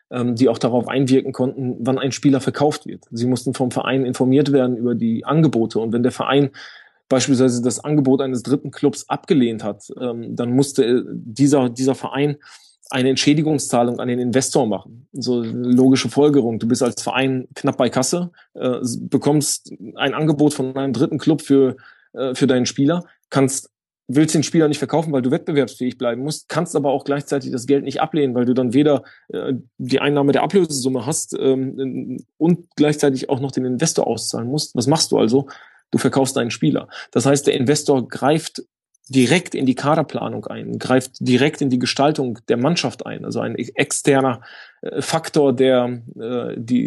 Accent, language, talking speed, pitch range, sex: German, German, 175 wpm, 125-145 Hz, male